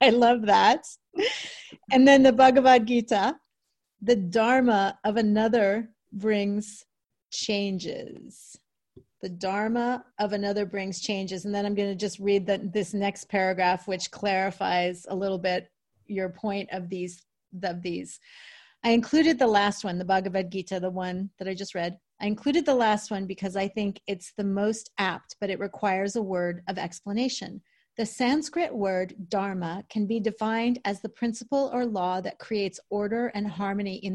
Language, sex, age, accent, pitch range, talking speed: English, female, 30-49, American, 195-230 Hz, 160 wpm